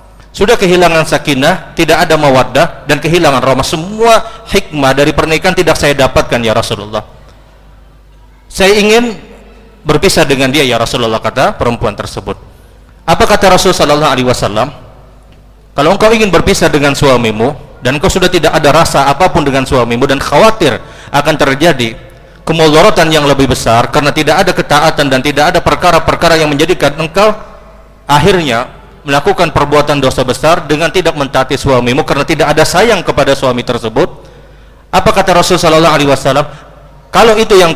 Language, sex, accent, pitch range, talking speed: Indonesian, male, native, 135-170 Hz, 145 wpm